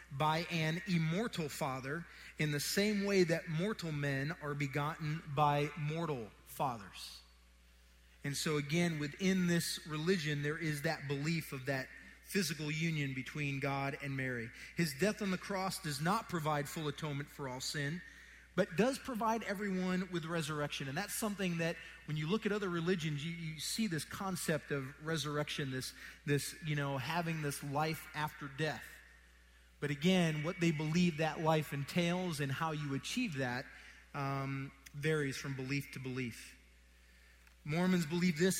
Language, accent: English, American